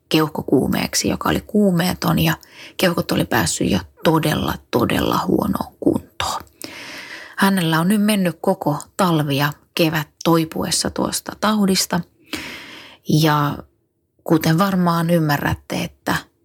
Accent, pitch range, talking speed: native, 150-175 Hz, 100 wpm